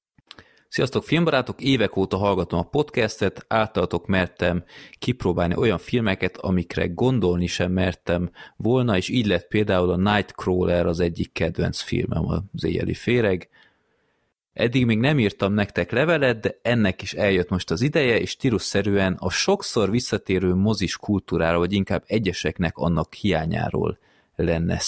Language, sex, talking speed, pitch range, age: Hungarian, male, 135 wpm, 90-110 Hz, 30-49